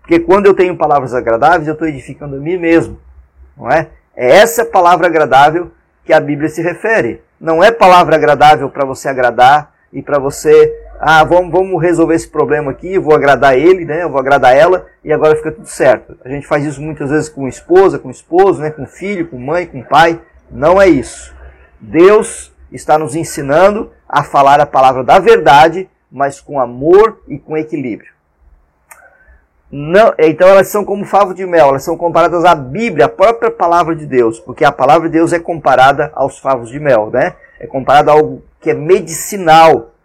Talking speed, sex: 190 wpm, male